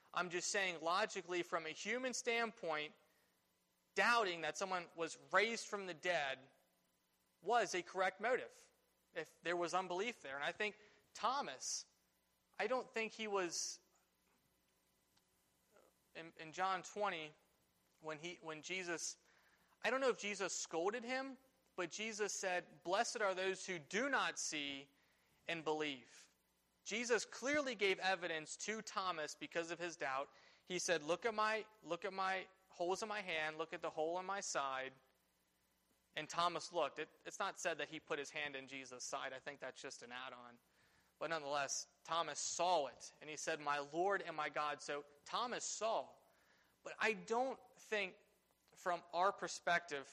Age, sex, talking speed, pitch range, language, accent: 30-49, male, 160 wpm, 155-200 Hz, English, American